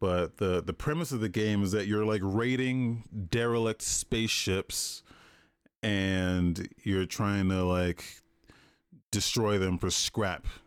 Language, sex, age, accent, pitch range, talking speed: English, male, 30-49, American, 95-115 Hz, 130 wpm